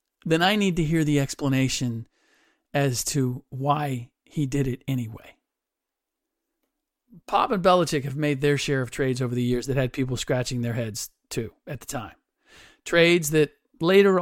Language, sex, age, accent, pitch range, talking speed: English, male, 50-69, American, 135-190 Hz, 165 wpm